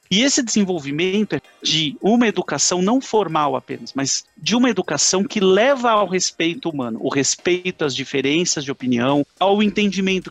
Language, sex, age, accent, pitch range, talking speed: Portuguese, male, 40-59, Brazilian, 155-210 Hz, 155 wpm